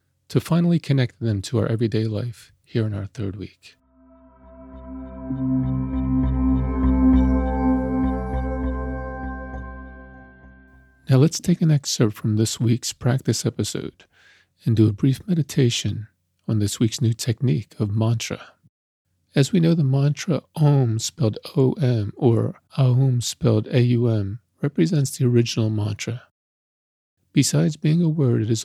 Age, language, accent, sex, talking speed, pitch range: 40-59, English, American, male, 120 wpm, 95-130 Hz